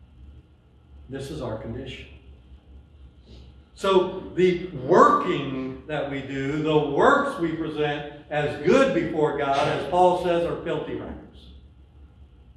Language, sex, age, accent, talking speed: English, male, 60-79, American, 115 wpm